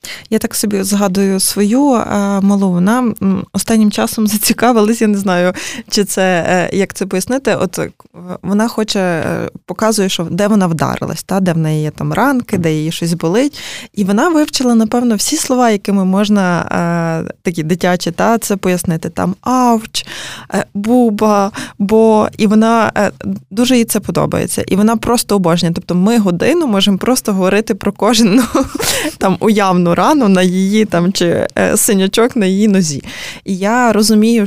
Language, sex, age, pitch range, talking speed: Ukrainian, female, 20-39, 180-220 Hz, 150 wpm